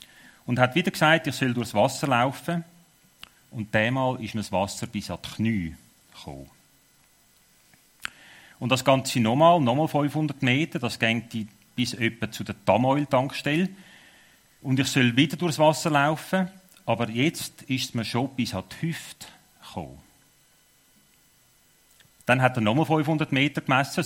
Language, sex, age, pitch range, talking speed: German, male, 40-59, 110-145 Hz, 145 wpm